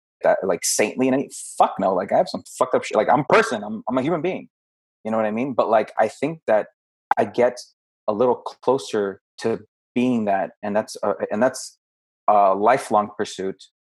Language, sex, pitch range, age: English, male, 95-115 Hz, 30-49